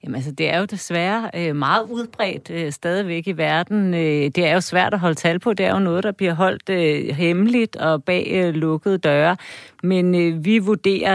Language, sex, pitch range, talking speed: Danish, female, 165-205 Hz, 185 wpm